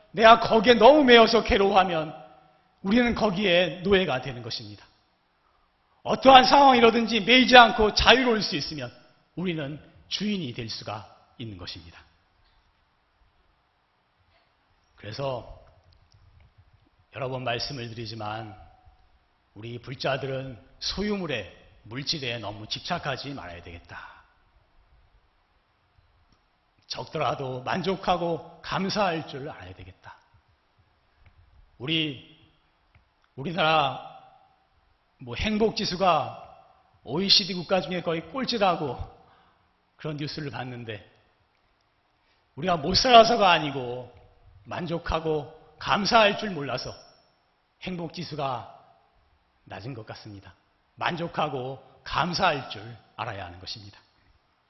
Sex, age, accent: male, 40-59, native